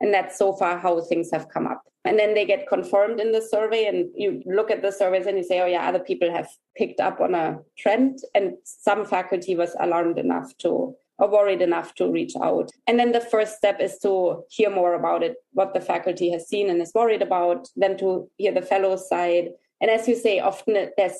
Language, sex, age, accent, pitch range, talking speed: English, female, 20-39, German, 175-215 Hz, 230 wpm